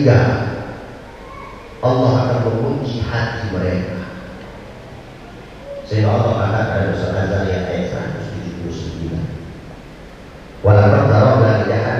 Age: 40-59